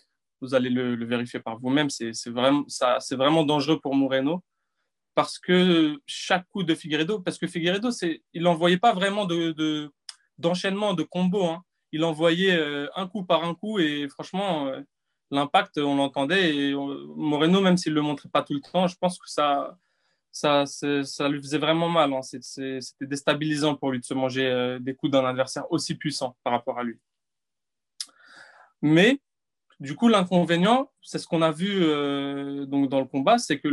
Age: 20-39